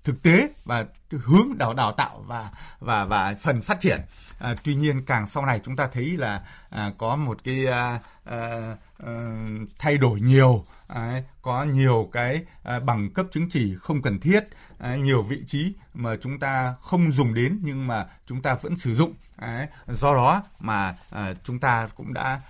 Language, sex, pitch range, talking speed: Vietnamese, male, 115-150 Hz, 190 wpm